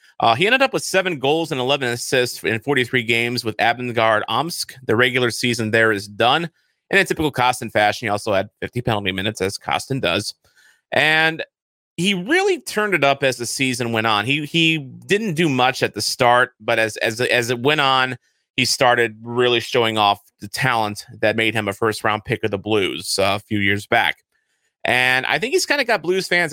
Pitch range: 110-150 Hz